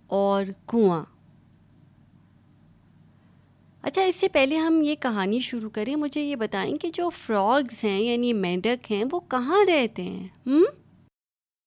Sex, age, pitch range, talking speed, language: female, 30-49, 180-235 Hz, 135 wpm, Urdu